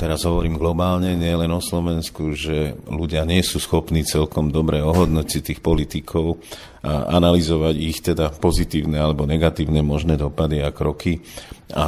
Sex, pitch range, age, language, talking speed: male, 80-85 Hz, 40-59, Slovak, 145 wpm